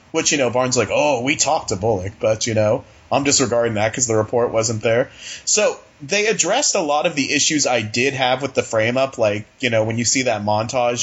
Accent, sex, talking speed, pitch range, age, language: American, male, 235 wpm, 115-170 Hz, 30-49, English